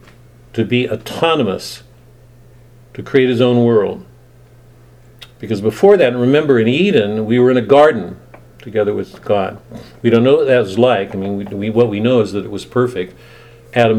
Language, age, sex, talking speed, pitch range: English, 50-69, male, 180 wpm, 110-125 Hz